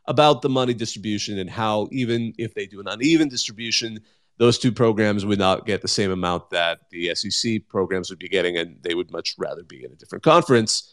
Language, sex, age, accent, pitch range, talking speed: English, male, 30-49, American, 110-140 Hz, 215 wpm